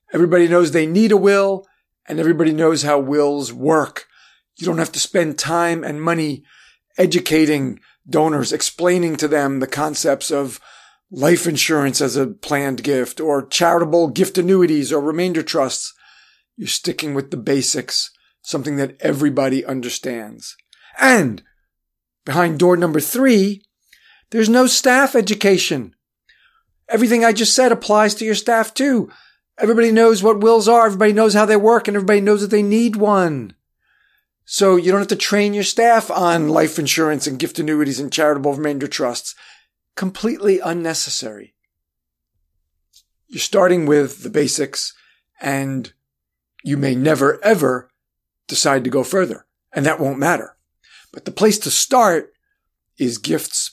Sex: male